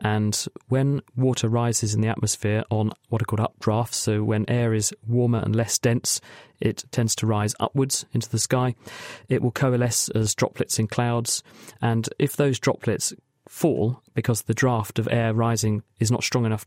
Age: 40-59